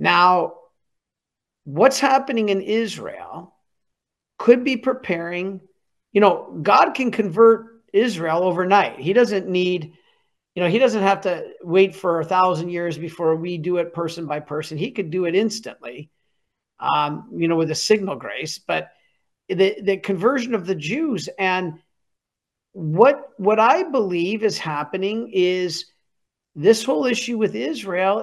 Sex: male